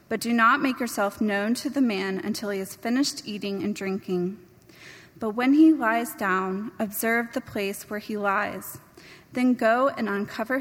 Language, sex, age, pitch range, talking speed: English, female, 20-39, 205-260 Hz, 175 wpm